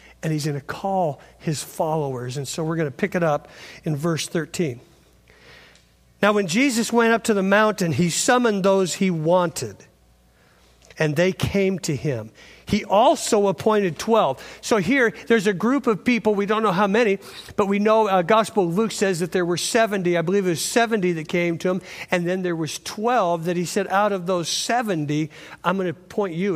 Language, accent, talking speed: English, American, 205 wpm